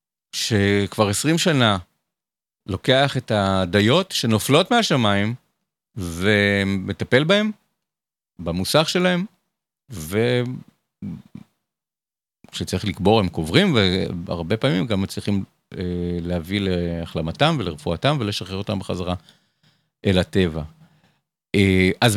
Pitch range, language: 100-135 Hz, Hebrew